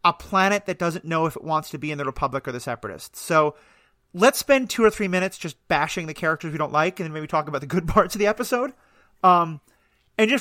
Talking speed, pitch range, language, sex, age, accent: 255 wpm, 155-200 Hz, English, male, 30-49, American